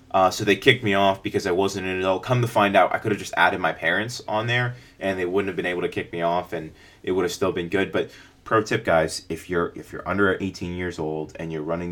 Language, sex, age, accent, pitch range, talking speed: English, male, 20-39, American, 85-100 Hz, 280 wpm